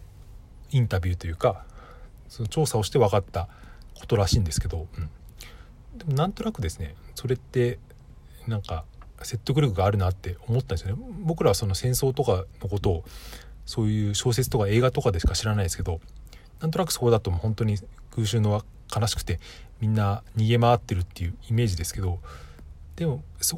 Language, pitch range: Japanese, 95-130 Hz